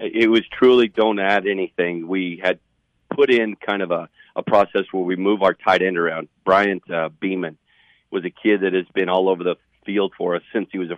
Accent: American